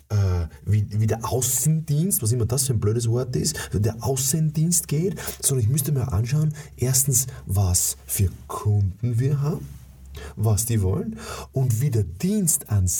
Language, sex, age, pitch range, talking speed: German, male, 30-49, 95-140 Hz, 155 wpm